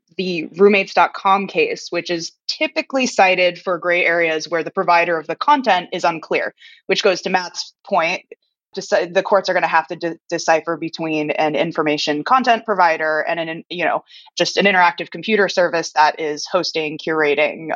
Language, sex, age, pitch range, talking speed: English, female, 20-39, 165-200 Hz, 170 wpm